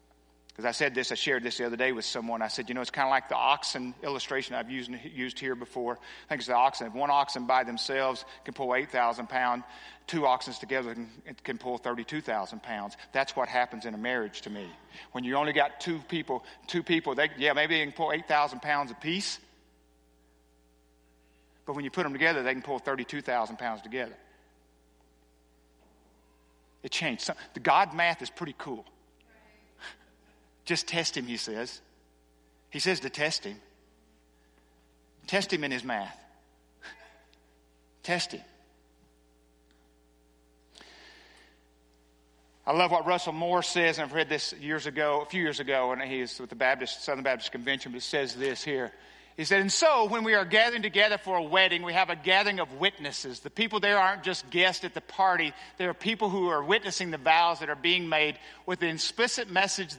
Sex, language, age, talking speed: male, English, 50-69, 190 wpm